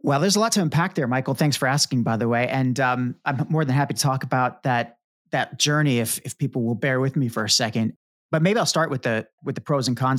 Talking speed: 275 wpm